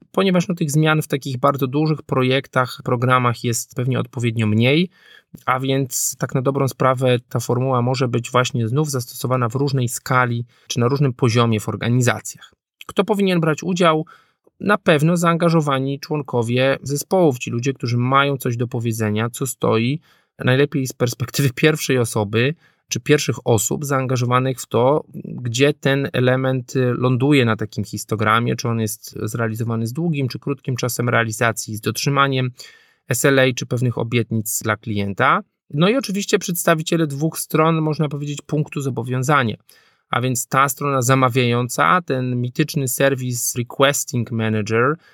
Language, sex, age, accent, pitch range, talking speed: Polish, male, 20-39, native, 120-145 Hz, 145 wpm